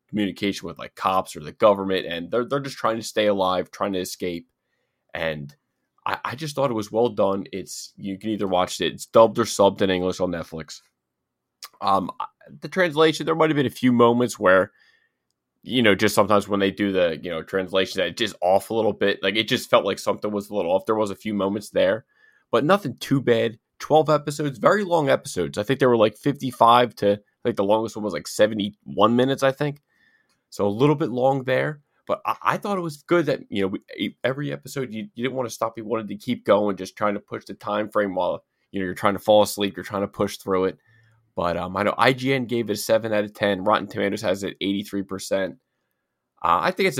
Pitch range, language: 95-130 Hz, English